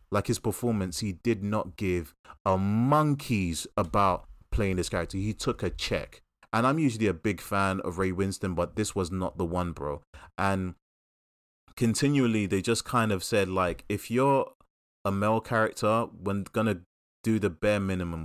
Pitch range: 85-110 Hz